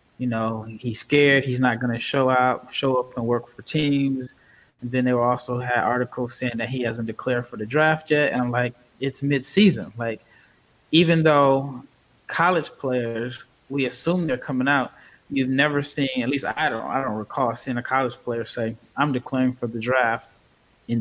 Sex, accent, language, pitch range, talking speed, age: male, American, English, 120-135 Hz, 195 wpm, 20-39